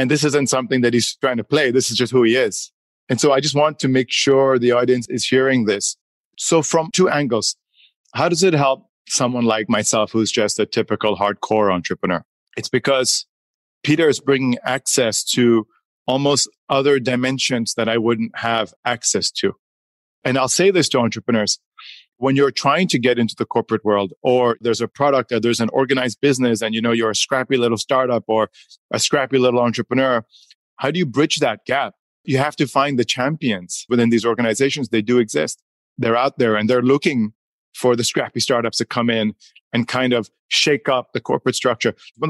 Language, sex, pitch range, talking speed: English, male, 115-135 Hz, 195 wpm